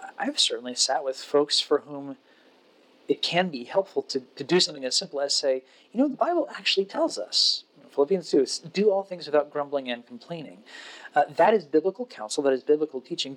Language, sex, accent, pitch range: English, male, American, 130-180 Hz